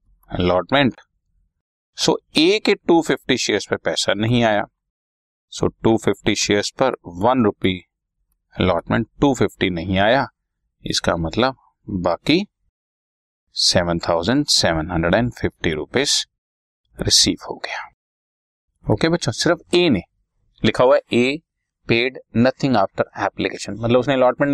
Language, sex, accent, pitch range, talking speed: Hindi, male, native, 85-120 Hz, 130 wpm